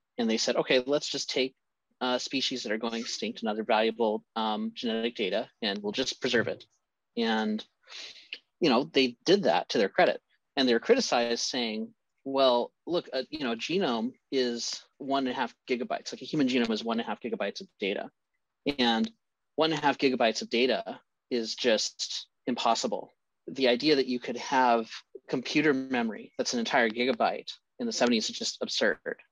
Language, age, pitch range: English, 30-49, 110-145 Hz